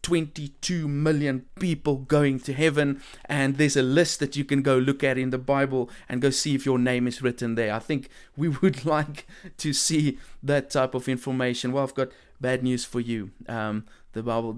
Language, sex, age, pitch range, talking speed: English, male, 30-49, 130-155 Hz, 200 wpm